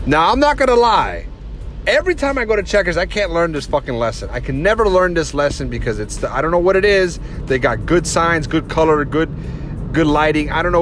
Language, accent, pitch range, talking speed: English, American, 130-170 Hz, 245 wpm